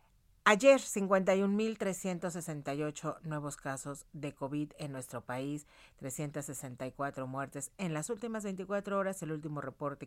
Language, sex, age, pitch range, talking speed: Spanish, female, 40-59, 145-190 Hz, 115 wpm